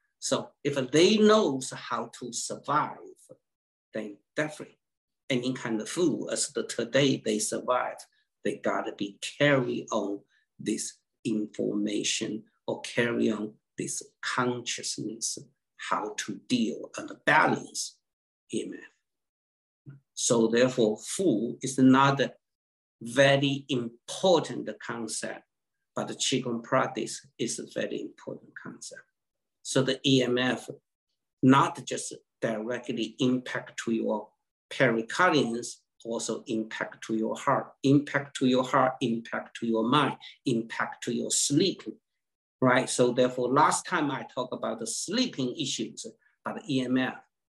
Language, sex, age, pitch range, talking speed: English, male, 60-79, 110-135 Hz, 120 wpm